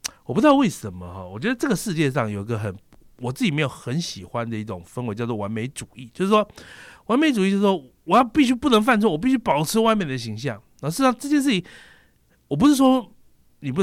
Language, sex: Chinese, male